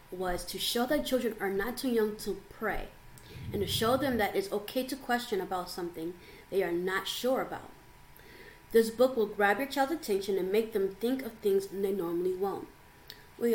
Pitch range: 185-230 Hz